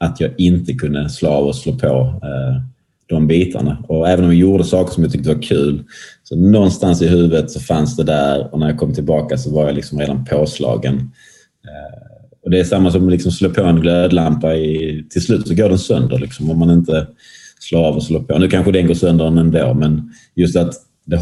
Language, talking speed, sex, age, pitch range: English, 230 wpm, male, 30-49, 75-90 Hz